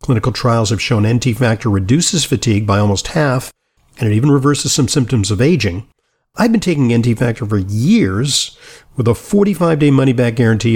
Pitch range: 110-145 Hz